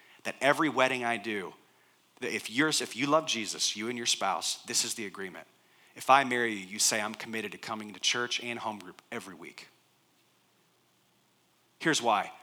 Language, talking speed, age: English, 180 wpm, 30-49